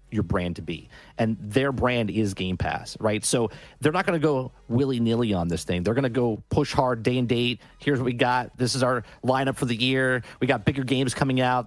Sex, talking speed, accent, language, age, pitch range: male, 240 wpm, American, English, 30-49, 110-140 Hz